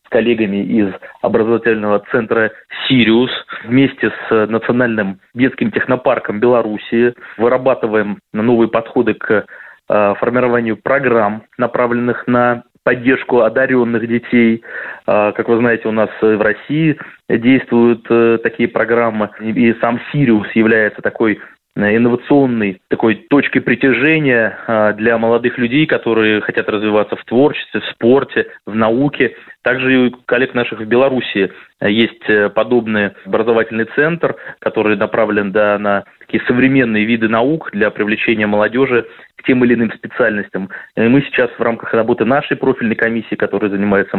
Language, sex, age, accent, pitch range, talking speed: Russian, male, 20-39, native, 110-125 Hz, 120 wpm